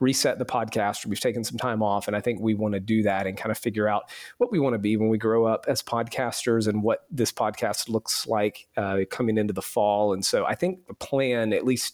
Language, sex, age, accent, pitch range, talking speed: English, male, 40-59, American, 105-125 Hz, 255 wpm